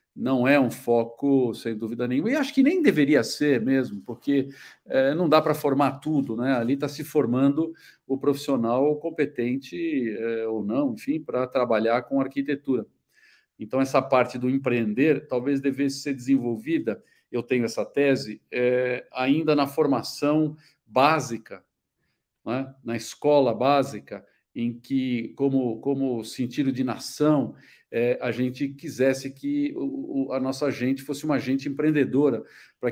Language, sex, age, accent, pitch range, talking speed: Portuguese, male, 50-69, Brazilian, 125-145 Hz, 135 wpm